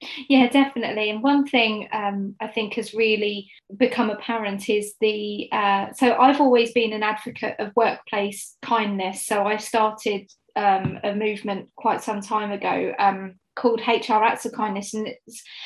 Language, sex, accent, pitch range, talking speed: English, female, British, 215-255 Hz, 160 wpm